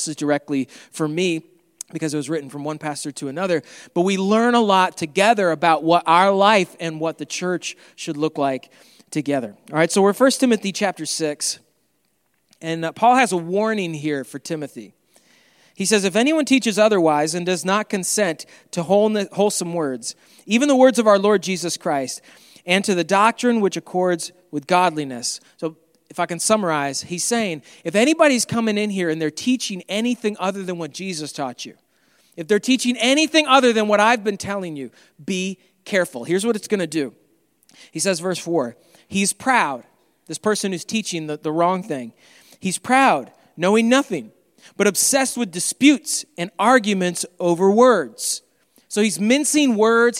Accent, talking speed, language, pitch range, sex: American, 175 wpm, English, 165-220 Hz, male